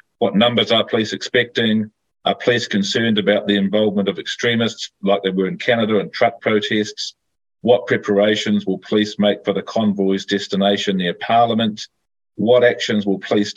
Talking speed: 160 wpm